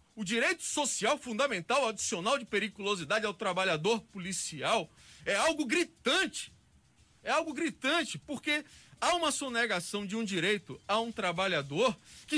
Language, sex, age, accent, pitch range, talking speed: Portuguese, male, 40-59, Brazilian, 205-275 Hz, 130 wpm